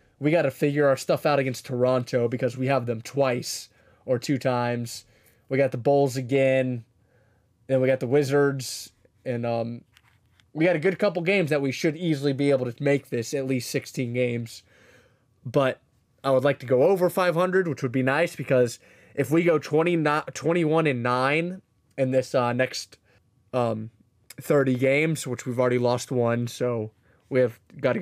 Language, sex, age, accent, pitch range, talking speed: English, male, 20-39, American, 120-140 Hz, 180 wpm